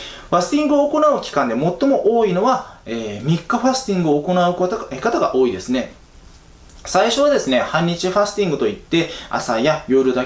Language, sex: Japanese, male